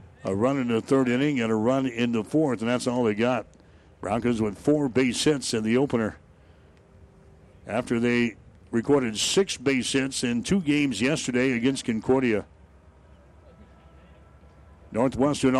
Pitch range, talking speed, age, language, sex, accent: 100-135 Hz, 145 wpm, 60-79, English, male, American